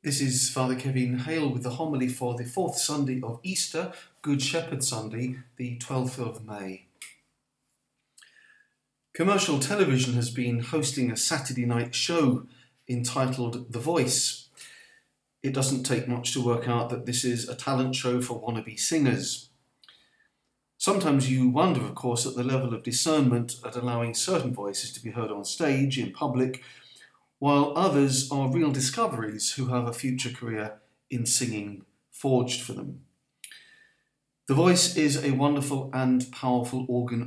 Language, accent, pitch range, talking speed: English, British, 120-140 Hz, 150 wpm